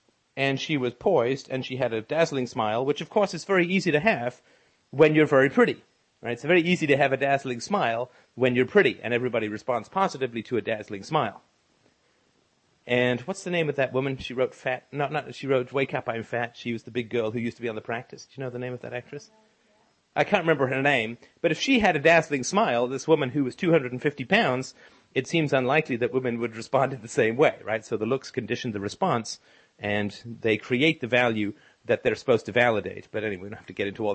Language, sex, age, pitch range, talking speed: English, male, 40-59, 115-150 Hz, 235 wpm